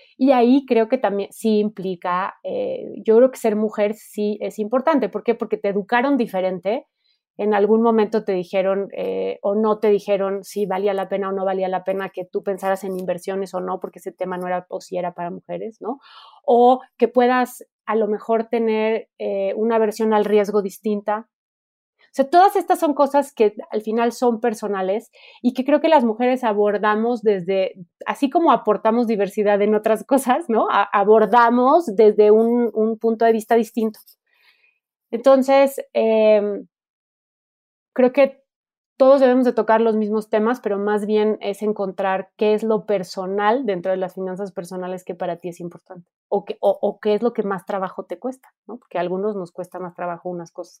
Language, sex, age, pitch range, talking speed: Spanish, female, 30-49, 195-235 Hz, 190 wpm